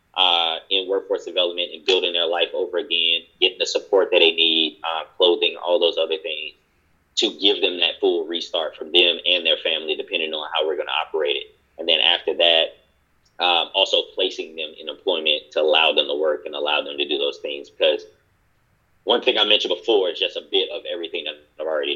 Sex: male